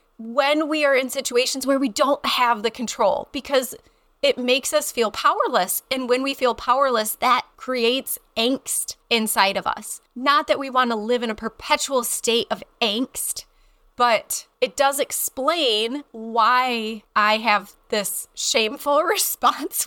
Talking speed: 150 wpm